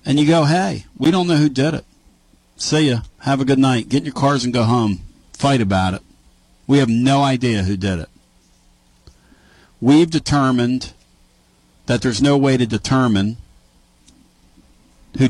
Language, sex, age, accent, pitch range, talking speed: English, male, 50-69, American, 105-130 Hz, 165 wpm